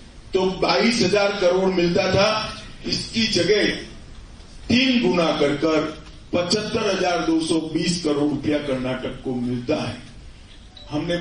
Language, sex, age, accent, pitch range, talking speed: Hindi, male, 40-59, native, 160-190 Hz, 95 wpm